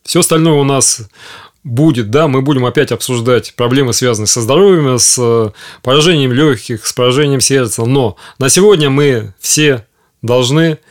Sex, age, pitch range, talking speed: male, 30-49, 120-150 Hz, 145 wpm